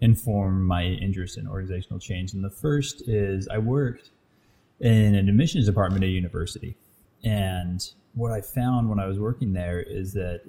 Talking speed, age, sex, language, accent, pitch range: 170 wpm, 20-39, male, English, American, 95-110 Hz